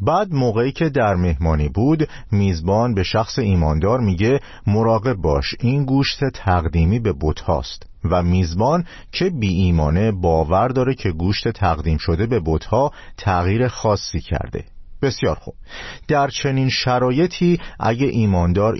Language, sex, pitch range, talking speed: Persian, male, 90-120 Hz, 135 wpm